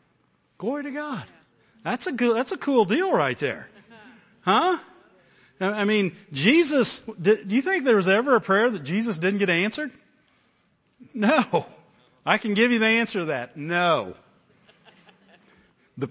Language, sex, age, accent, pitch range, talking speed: English, male, 50-69, American, 155-210 Hz, 140 wpm